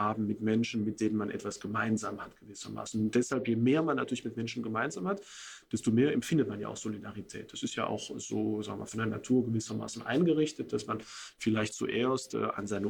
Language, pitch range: German, 110-135 Hz